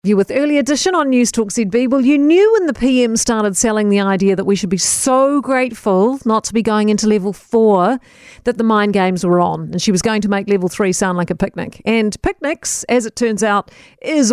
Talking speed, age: 235 wpm, 50-69